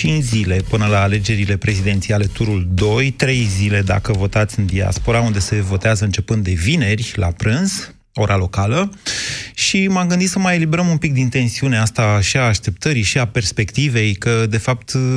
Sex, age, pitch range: male, 30-49, 105-140 Hz